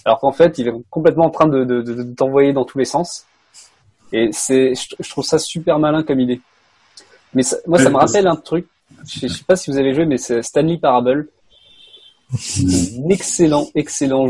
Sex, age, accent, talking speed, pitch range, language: male, 20-39, French, 215 wpm, 125-160 Hz, French